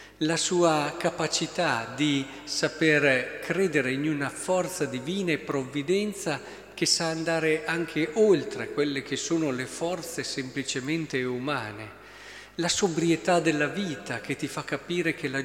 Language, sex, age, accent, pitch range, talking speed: Italian, male, 50-69, native, 140-180 Hz, 130 wpm